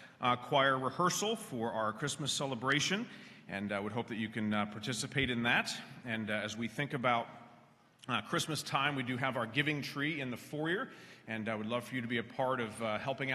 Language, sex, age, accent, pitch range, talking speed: English, male, 40-59, American, 115-140 Hz, 215 wpm